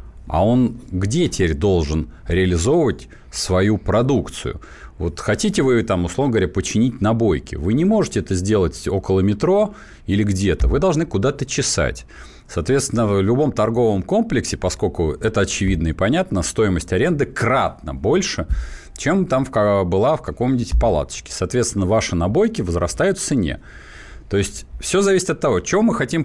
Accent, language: native, Russian